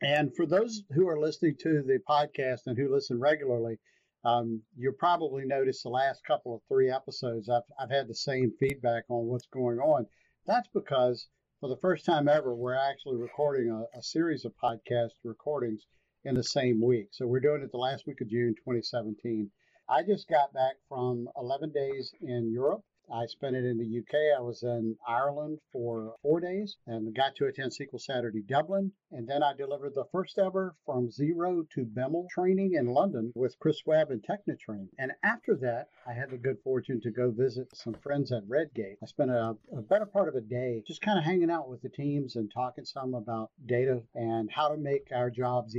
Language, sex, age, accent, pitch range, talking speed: English, male, 60-79, American, 120-150 Hz, 200 wpm